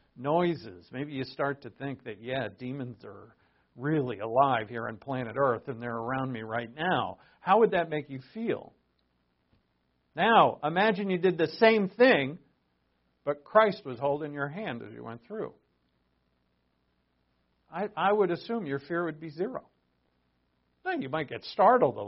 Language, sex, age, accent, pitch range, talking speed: English, male, 50-69, American, 115-185 Hz, 160 wpm